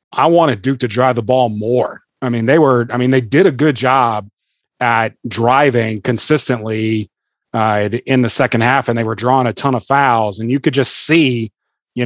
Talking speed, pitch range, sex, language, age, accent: 205 wpm, 115-130 Hz, male, English, 30-49, American